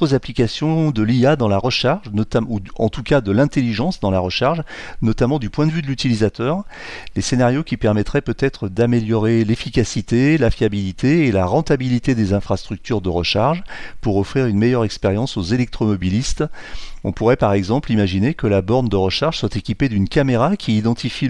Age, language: 40-59, French